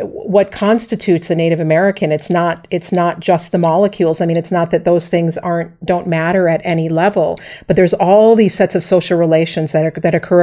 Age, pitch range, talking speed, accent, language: 40-59, 165-190 Hz, 205 wpm, American, English